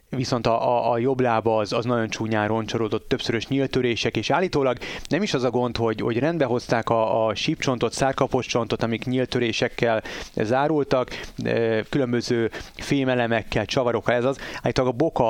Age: 30-49